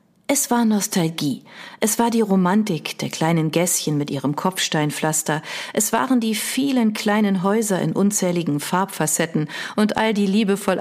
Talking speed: 145 wpm